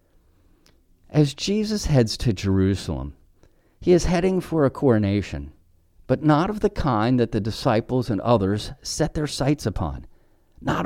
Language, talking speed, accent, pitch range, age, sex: English, 145 wpm, American, 90-145 Hz, 50-69, male